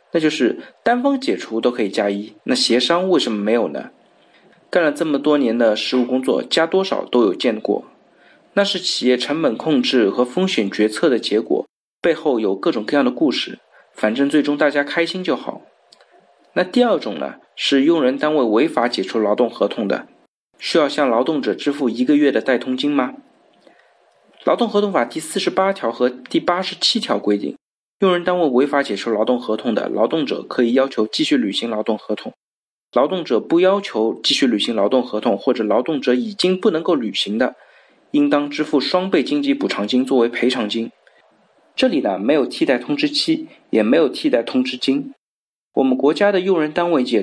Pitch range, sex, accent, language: 125-195 Hz, male, native, Chinese